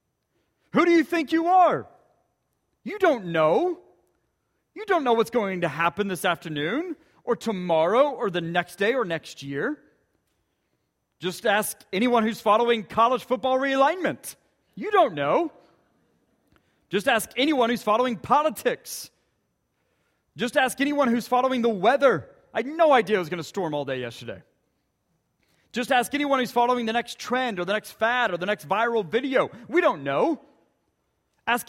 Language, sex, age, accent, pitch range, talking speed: English, male, 30-49, American, 180-265 Hz, 160 wpm